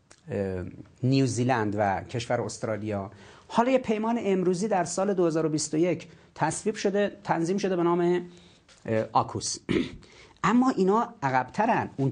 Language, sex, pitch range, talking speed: Persian, male, 120-180 Hz, 110 wpm